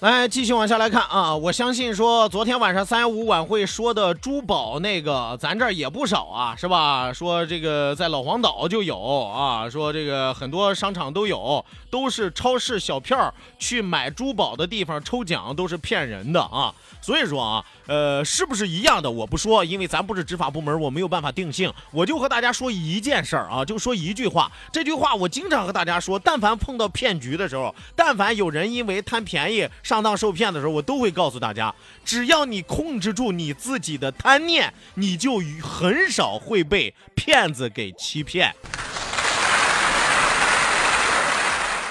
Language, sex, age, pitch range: Chinese, male, 30-49, 160-235 Hz